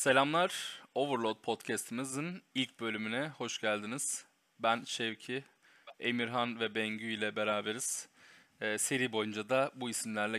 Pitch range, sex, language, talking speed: 110-130 Hz, male, Turkish, 115 wpm